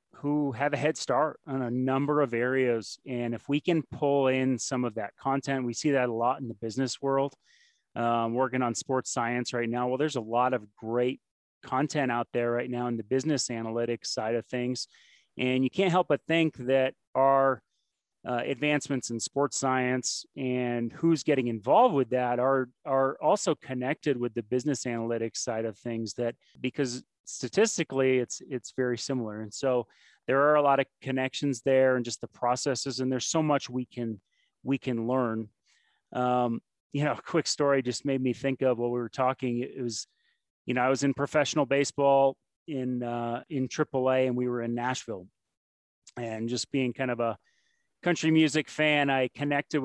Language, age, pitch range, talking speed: English, 30-49, 120-140 Hz, 190 wpm